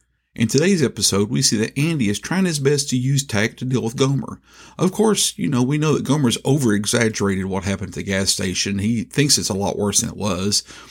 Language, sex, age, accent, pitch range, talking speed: English, male, 40-59, American, 105-155 Hz, 230 wpm